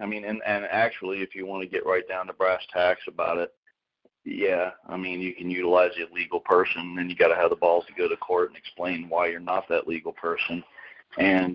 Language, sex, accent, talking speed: English, male, American, 240 wpm